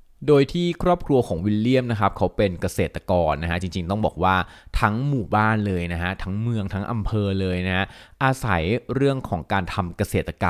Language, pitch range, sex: Thai, 90-110 Hz, male